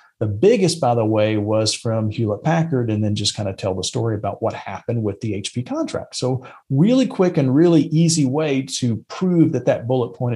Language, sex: English, male